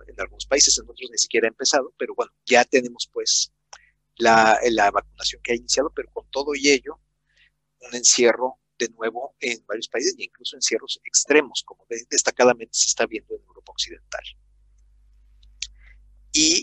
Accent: Mexican